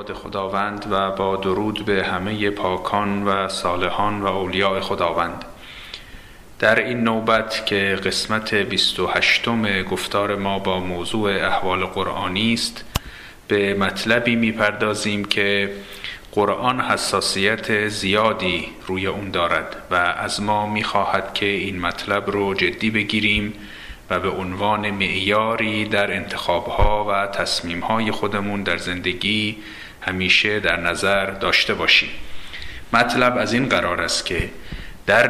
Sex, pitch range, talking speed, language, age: male, 95-110 Hz, 115 wpm, Persian, 40-59